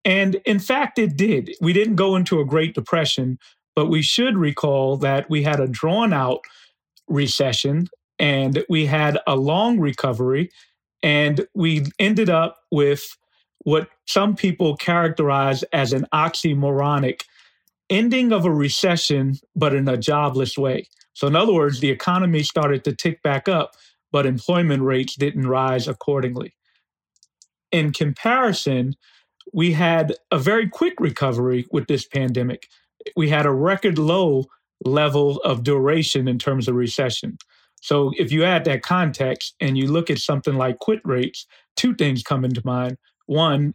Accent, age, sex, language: American, 40-59, male, English